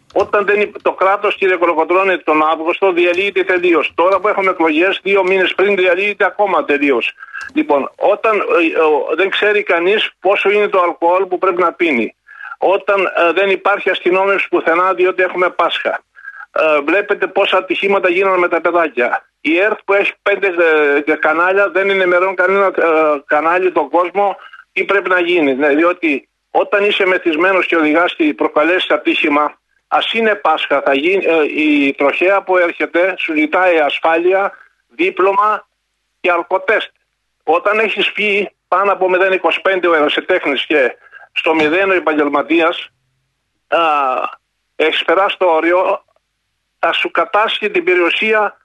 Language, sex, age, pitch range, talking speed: Greek, male, 50-69, 170-205 Hz, 150 wpm